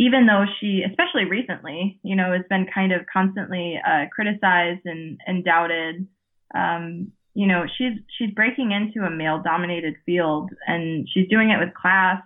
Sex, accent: female, American